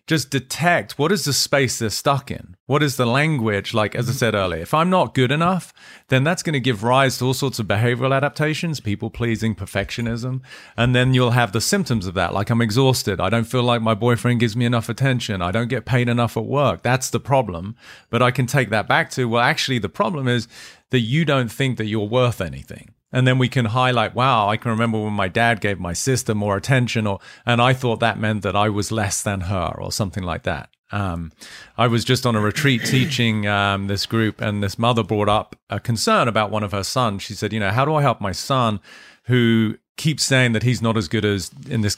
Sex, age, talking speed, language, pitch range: male, 40-59, 235 wpm, English, 105-130 Hz